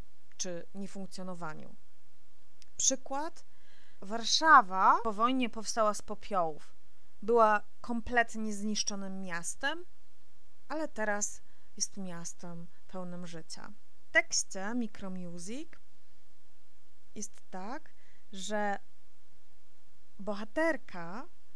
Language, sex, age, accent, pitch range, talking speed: Polish, female, 30-49, native, 185-235 Hz, 75 wpm